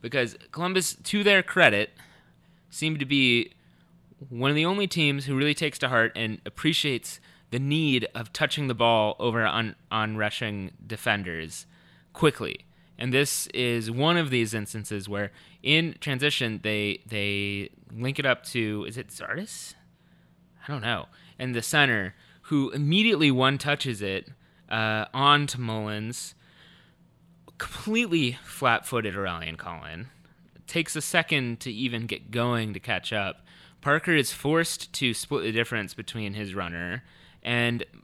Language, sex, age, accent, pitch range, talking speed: English, male, 20-39, American, 110-155 Hz, 140 wpm